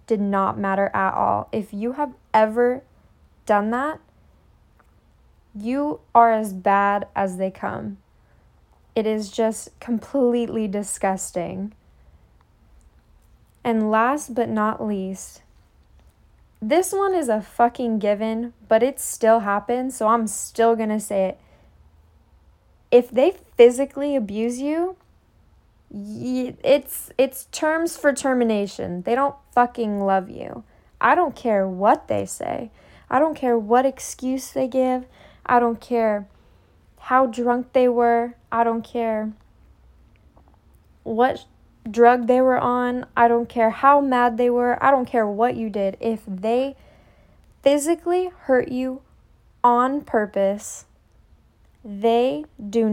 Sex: female